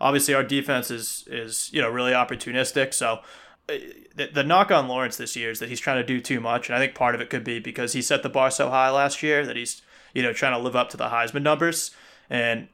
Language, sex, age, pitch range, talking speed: English, male, 20-39, 120-145 Hz, 260 wpm